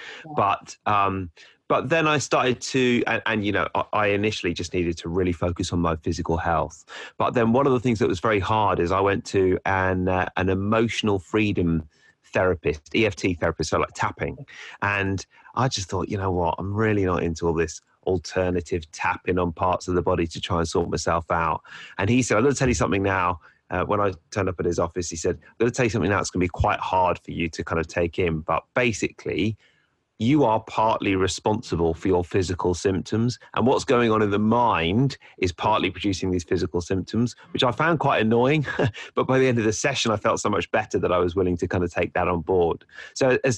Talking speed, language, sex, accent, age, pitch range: 230 wpm, English, male, British, 30-49, 85-110 Hz